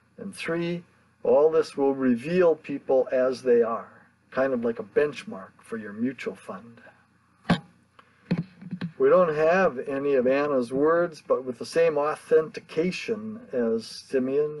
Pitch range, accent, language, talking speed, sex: 135-225 Hz, American, English, 135 wpm, male